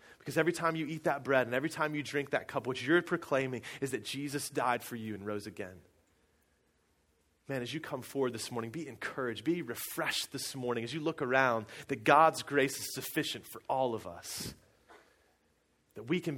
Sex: male